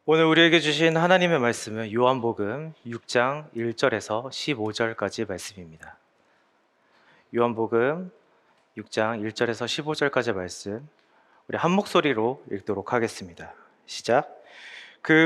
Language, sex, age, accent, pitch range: Korean, male, 30-49, native, 115-150 Hz